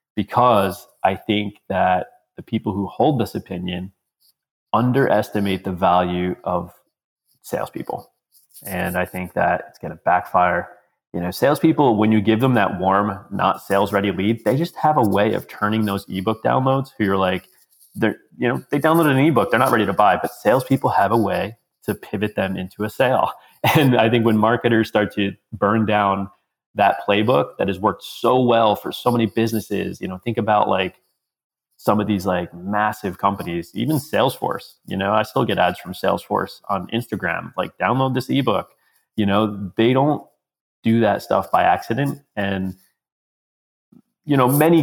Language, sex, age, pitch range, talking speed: English, male, 30-49, 100-120 Hz, 175 wpm